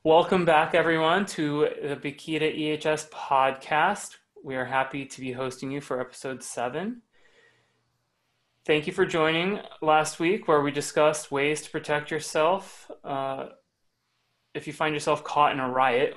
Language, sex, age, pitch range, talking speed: English, male, 20-39, 125-150 Hz, 150 wpm